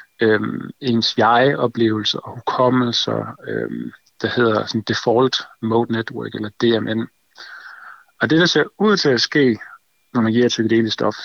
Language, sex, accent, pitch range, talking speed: Danish, male, native, 115-145 Hz, 150 wpm